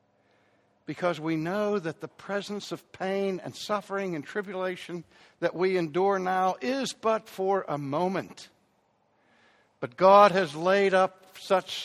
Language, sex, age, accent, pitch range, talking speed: English, male, 60-79, American, 125-185 Hz, 135 wpm